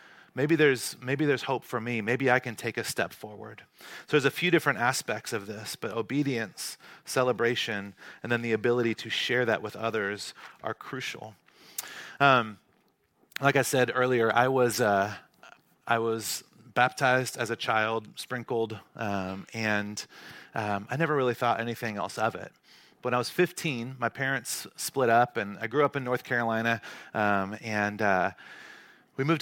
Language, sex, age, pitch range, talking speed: English, male, 30-49, 110-135 Hz, 165 wpm